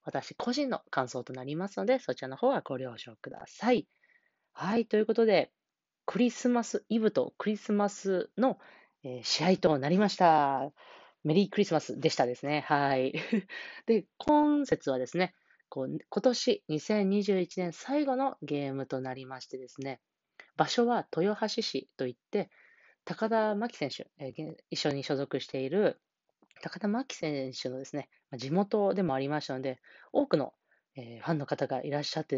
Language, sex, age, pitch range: Japanese, female, 20-39, 135-200 Hz